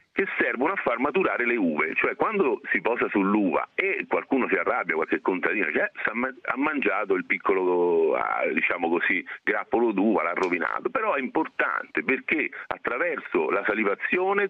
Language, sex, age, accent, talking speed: Italian, male, 50-69, native, 150 wpm